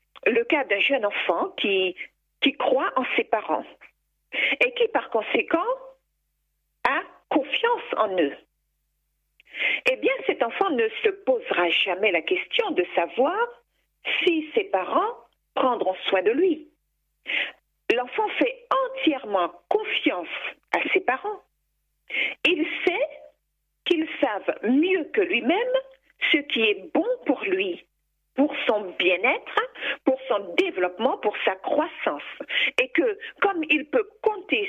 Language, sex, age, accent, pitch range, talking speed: French, female, 50-69, French, 280-435 Hz, 125 wpm